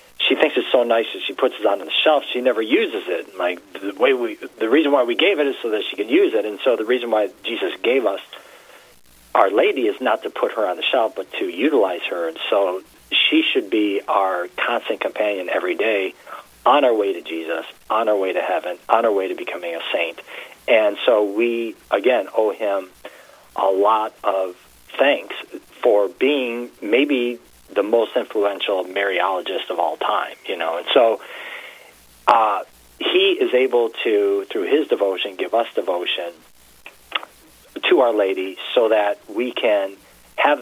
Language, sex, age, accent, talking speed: English, male, 40-59, American, 185 wpm